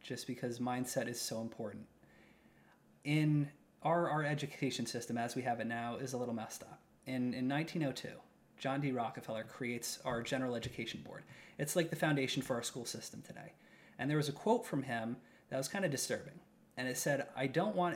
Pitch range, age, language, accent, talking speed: 130-175 Hz, 30-49, English, American, 195 wpm